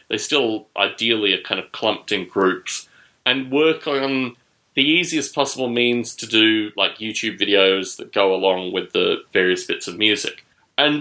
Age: 30-49